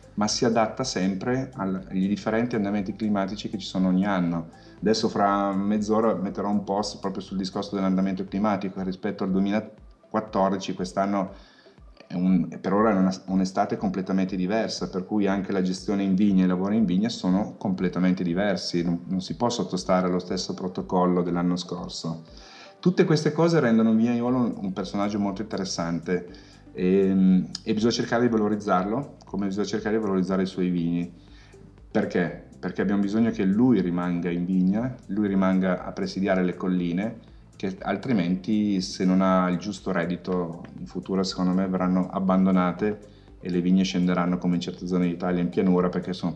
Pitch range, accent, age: 90-105 Hz, native, 30-49